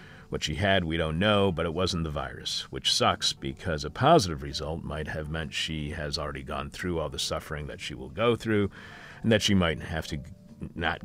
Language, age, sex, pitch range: English, 40-59, male, 75-100 Hz